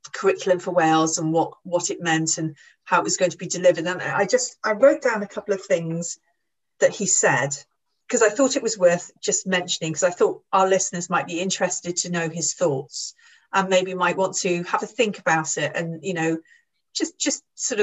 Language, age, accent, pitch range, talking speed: English, 40-59, British, 165-210 Hz, 220 wpm